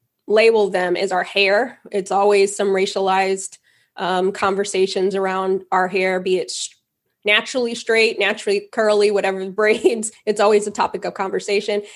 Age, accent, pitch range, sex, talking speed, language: 20-39, American, 190-220 Hz, female, 145 wpm, English